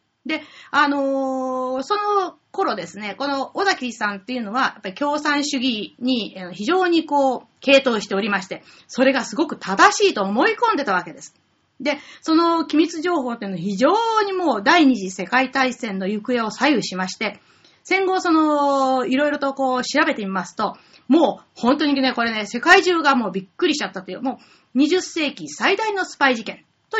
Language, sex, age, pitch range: Japanese, female, 30-49, 205-300 Hz